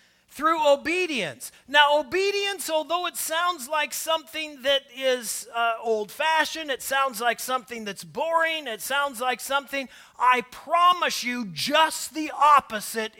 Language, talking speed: English, 130 wpm